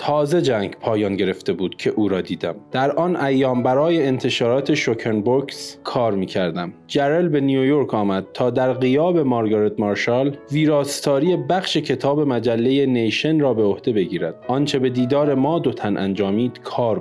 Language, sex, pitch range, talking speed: Persian, male, 115-150 Hz, 155 wpm